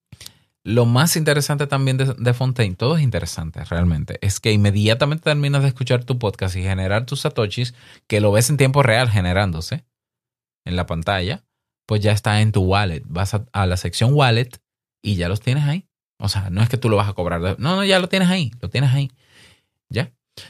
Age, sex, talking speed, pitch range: 20-39, male, 210 wpm, 95-135 Hz